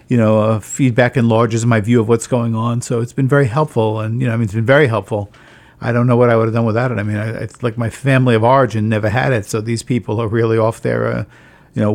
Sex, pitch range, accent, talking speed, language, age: male, 110-130 Hz, American, 285 wpm, English, 50-69